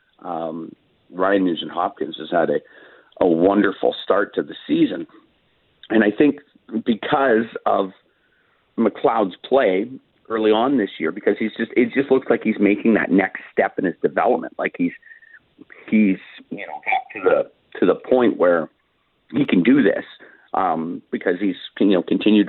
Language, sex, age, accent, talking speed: English, male, 50-69, American, 165 wpm